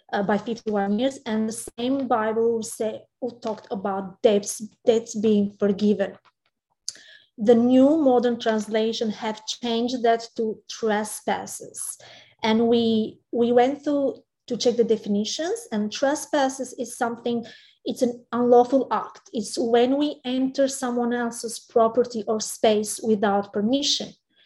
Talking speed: 130 wpm